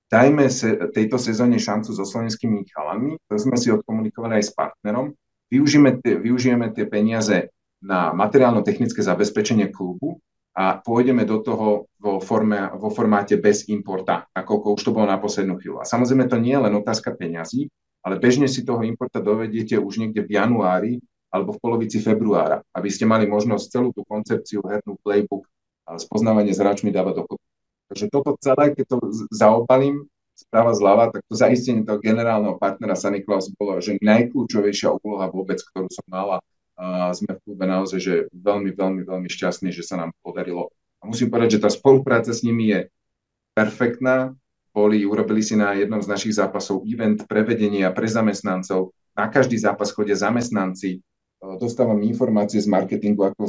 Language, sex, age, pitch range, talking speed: Slovak, male, 40-59, 100-115 Hz, 165 wpm